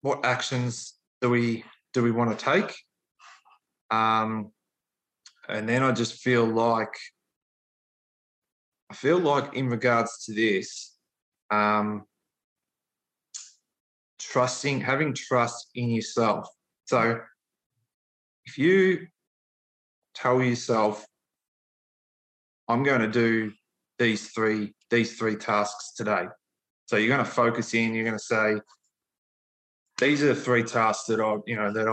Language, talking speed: English, 120 wpm